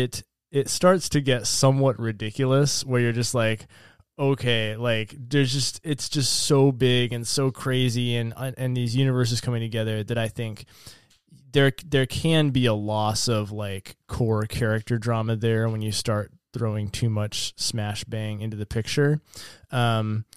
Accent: American